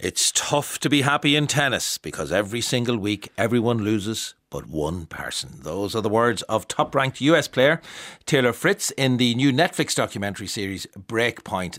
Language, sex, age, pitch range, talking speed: English, male, 60-79, 100-130 Hz, 170 wpm